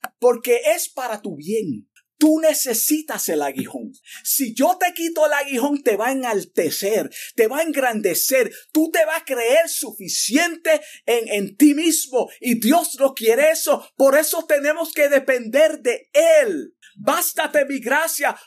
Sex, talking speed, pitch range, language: male, 155 wpm, 250-335 Hz, Spanish